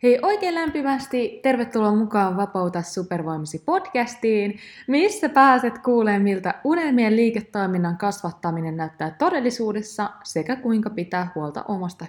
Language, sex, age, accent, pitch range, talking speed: Finnish, female, 20-39, native, 175-240 Hz, 105 wpm